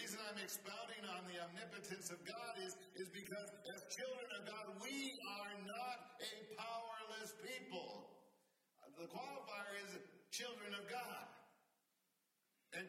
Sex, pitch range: male, 190-245 Hz